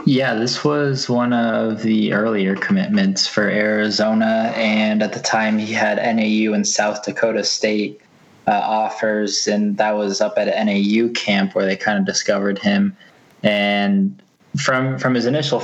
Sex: male